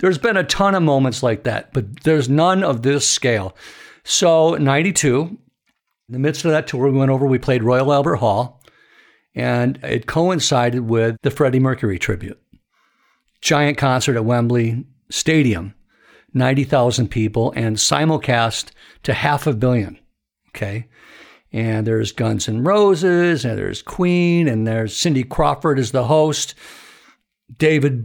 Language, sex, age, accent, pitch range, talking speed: English, male, 60-79, American, 120-150 Hz, 145 wpm